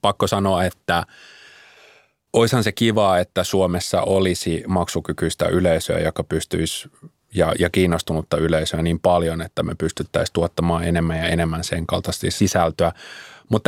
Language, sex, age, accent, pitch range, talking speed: Finnish, male, 30-49, native, 85-100 Hz, 130 wpm